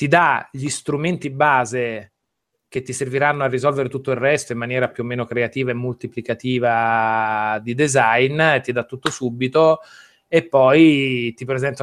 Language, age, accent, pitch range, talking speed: Italian, 30-49, native, 115-140 Hz, 155 wpm